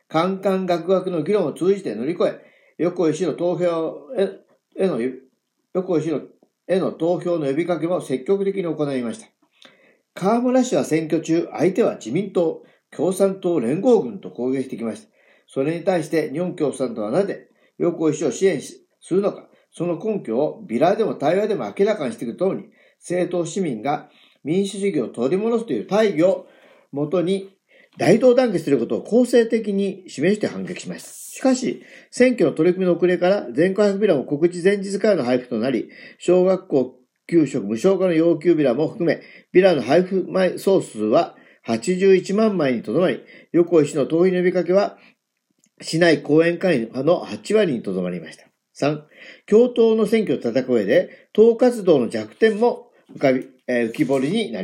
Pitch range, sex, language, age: 155-200 Hz, male, Japanese, 50-69